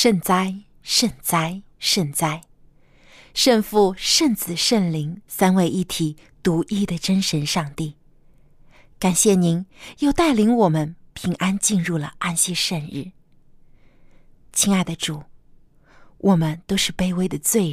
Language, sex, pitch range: Chinese, female, 155-220 Hz